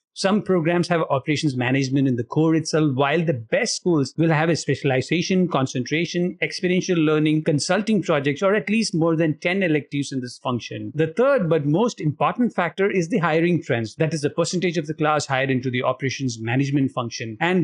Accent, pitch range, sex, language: Indian, 135-175 Hz, male, English